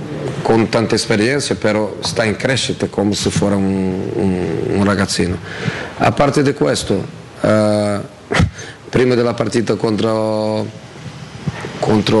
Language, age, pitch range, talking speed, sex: Italian, 40-59, 100-115 Hz, 120 wpm, male